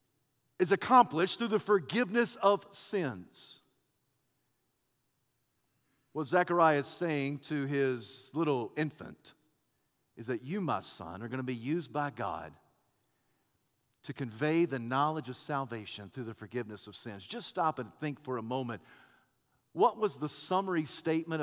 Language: English